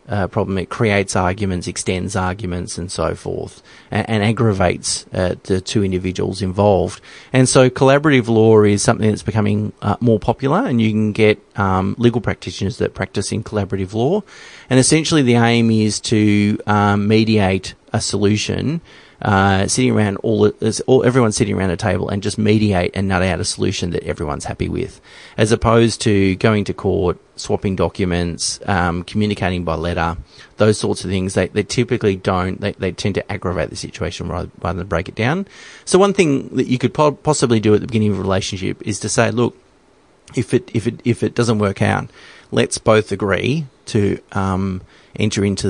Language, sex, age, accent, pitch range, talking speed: English, male, 30-49, Australian, 95-115 Hz, 185 wpm